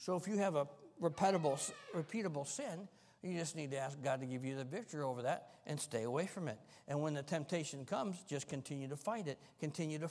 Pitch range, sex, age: 130-185 Hz, male, 60-79